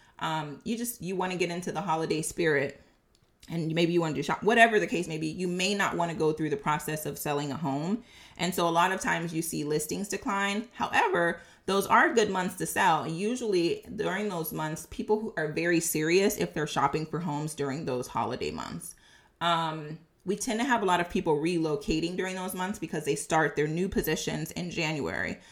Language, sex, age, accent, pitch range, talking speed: English, female, 30-49, American, 155-190 Hz, 215 wpm